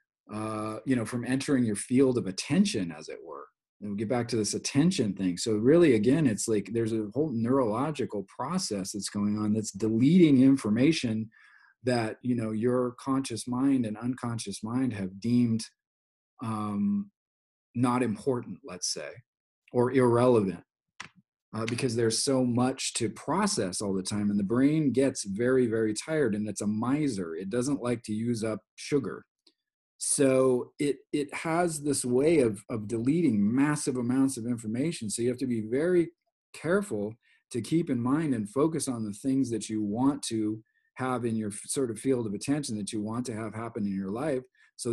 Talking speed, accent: 180 wpm, American